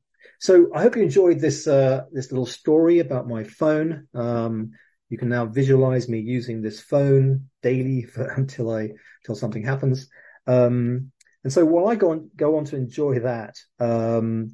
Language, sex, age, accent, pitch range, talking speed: English, male, 40-59, British, 120-140 Hz, 175 wpm